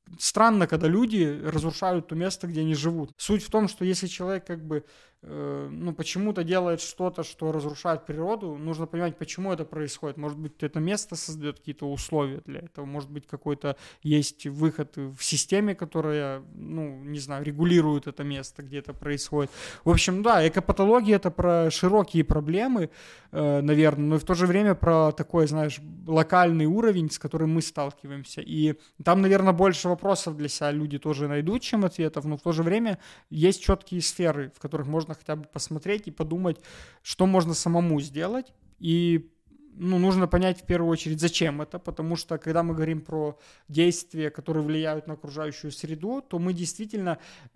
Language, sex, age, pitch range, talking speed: Russian, male, 20-39, 150-180 Hz, 170 wpm